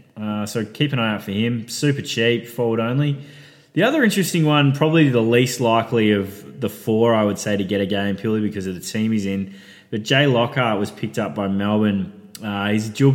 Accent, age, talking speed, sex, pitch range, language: Australian, 20-39, 225 wpm, male, 105-135 Hz, English